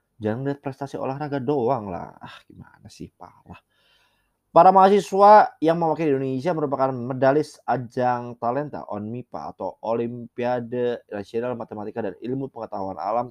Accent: native